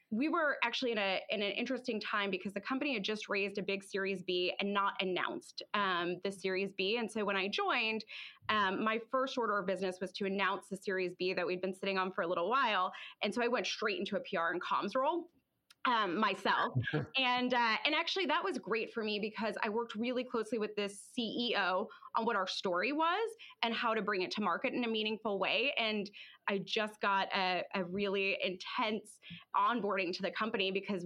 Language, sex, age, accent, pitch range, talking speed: English, female, 20-39, American, 190-240 Hz, 215 wpm